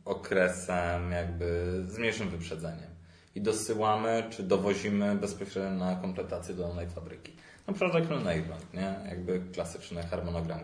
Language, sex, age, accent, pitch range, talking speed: Polish, male, 30-49, native, 85-115 Hz, 135 wpm